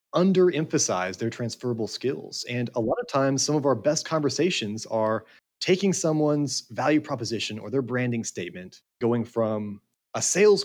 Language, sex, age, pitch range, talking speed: English, male, 30-49, 115-150 Hz, 150 wpm